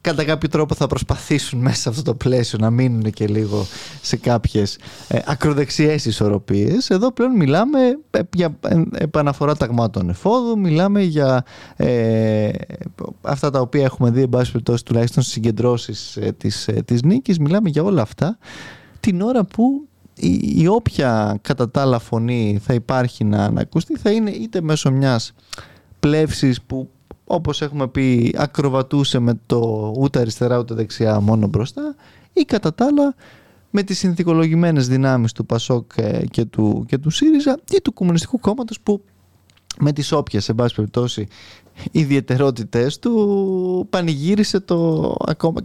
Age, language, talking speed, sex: 20-39, Greek, 145 wpm, male